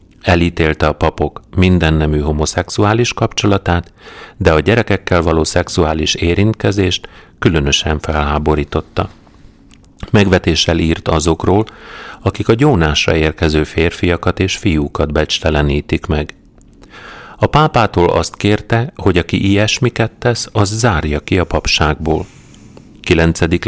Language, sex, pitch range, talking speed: Hungarian, male, 80-105 Hz, 105 wpm